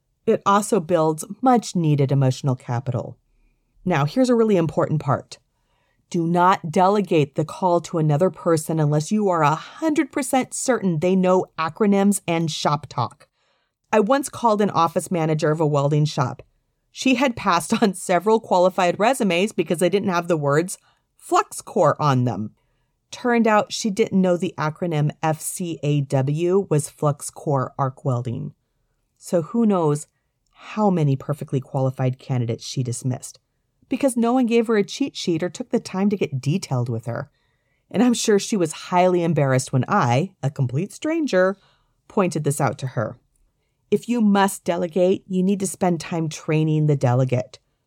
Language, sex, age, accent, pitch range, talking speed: English, female, 40-59, American, 140-200 Hz, 155 wpm